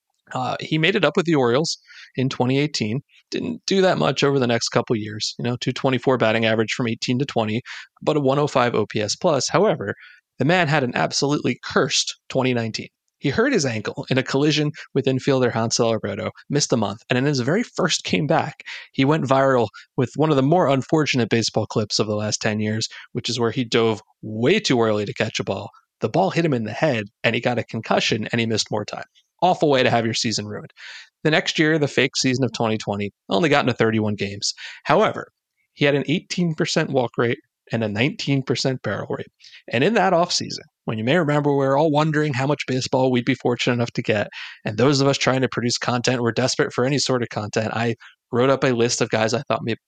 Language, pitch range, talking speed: English, 115-140 Hz, 220 wpm